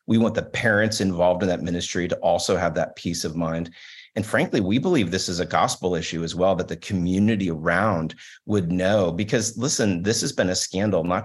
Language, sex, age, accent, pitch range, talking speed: English, male, 30-49, American, 85-105 Hz, 215 wpm